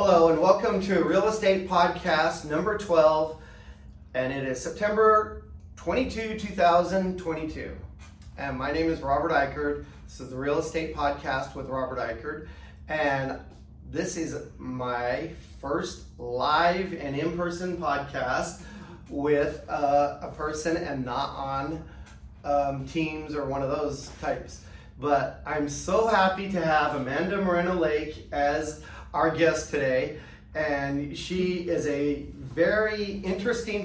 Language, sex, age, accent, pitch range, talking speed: English, male, 40-59, American, 135-170 Hz, 125 wpm